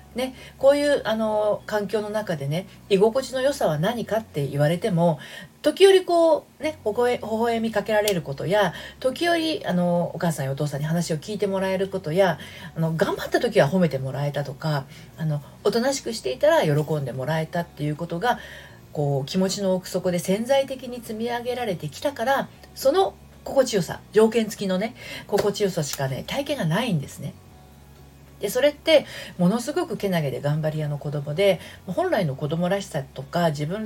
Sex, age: female, 40-59